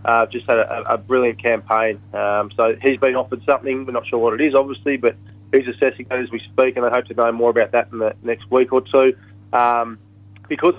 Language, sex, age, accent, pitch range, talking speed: English, male, 20-39, Australian, 115-140 Hz, 240 wpm